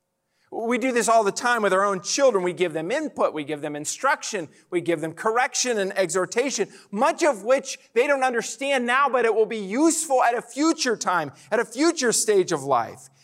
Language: English